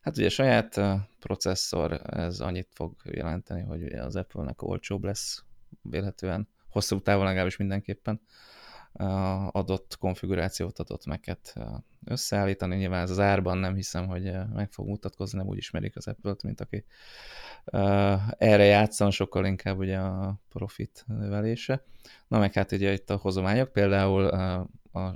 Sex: male